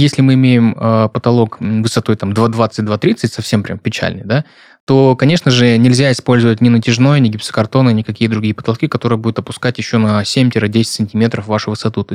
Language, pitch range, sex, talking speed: Russian, 110-135 Hz, male, 170 wpm